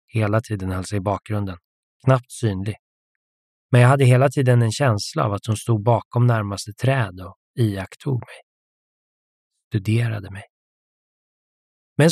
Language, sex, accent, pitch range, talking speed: Swedish, male, native, 105-125 Hz, 135 wpm